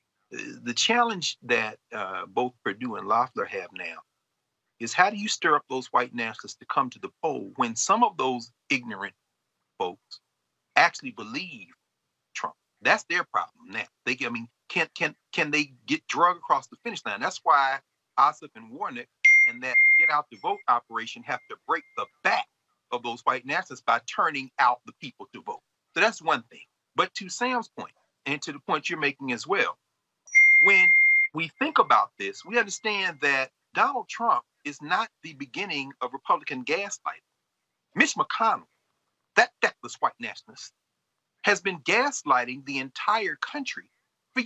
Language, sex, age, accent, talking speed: English, male, 40-59, American, 165 wpm